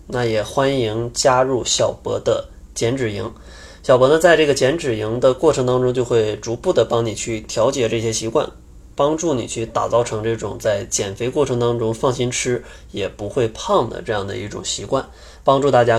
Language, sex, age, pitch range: Chinese, male, 20-39, 110-135 Hz